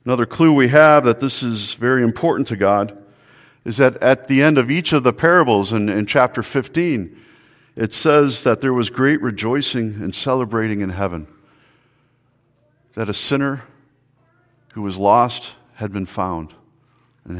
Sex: male